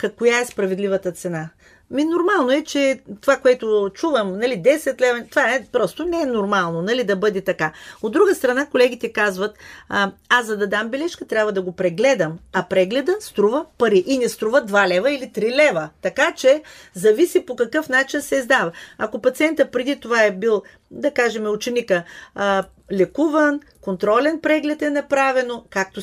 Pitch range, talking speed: 195-280 Hz, 170 wpm